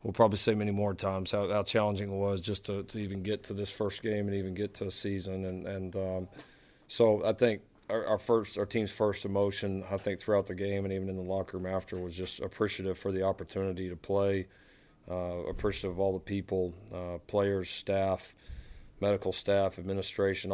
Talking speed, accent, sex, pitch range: 205 wpm, American, male, 95-100 Hz